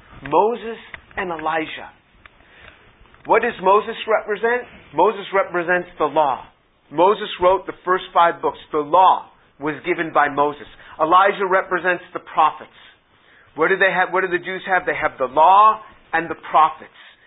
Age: 40-59